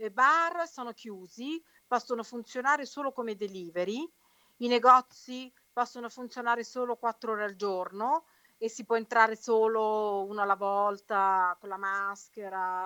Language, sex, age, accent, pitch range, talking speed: Italian, female, 40-59, native, 185-245 Hz, 135 wpm